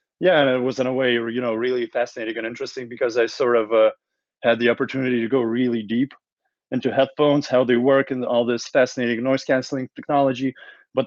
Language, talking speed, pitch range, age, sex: English, 200 wpm, 115-130 Hz, 30-49, male